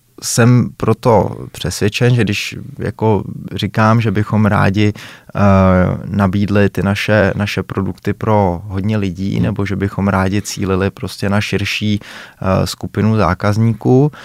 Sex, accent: male, native